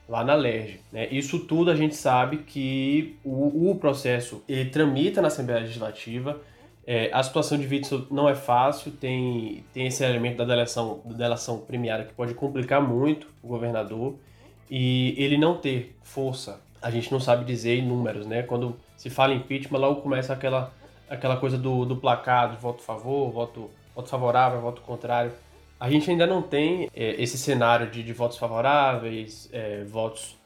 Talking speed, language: 165 wpm, Portuguese